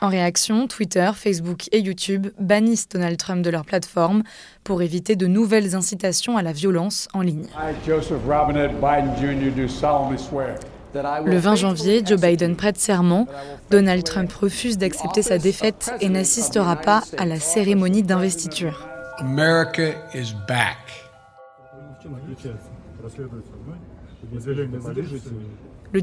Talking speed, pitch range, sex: 100 wpm, 165-205 Hz, female